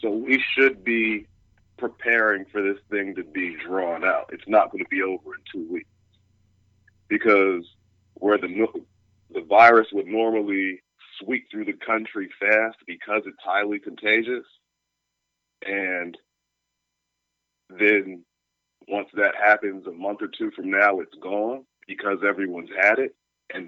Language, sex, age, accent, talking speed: English, male, 40-59, American, 140 wpm